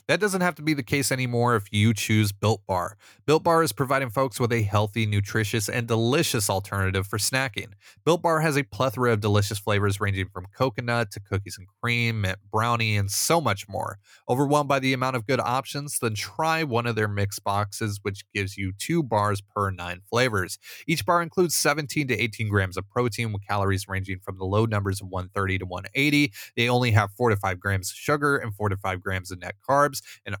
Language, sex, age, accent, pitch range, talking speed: English, male, 30-49, American, 100-135 Hz, 215 wpm